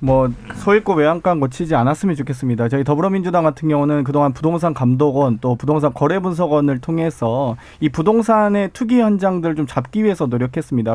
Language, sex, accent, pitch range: Korean, male, native, 135-185 Hz